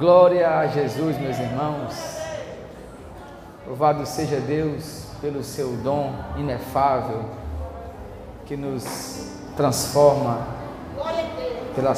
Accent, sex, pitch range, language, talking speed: Brazilian, male, 140-195 Hz, Portuguese, 80 wpm